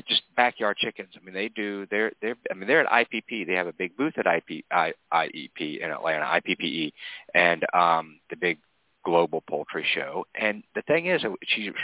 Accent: American